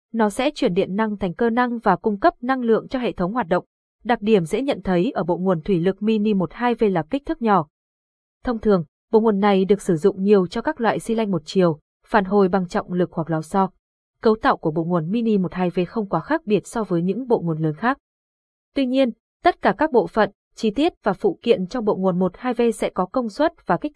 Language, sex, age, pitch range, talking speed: Vietnamese, female, 20-39, 185-235 Hz, 250 wpm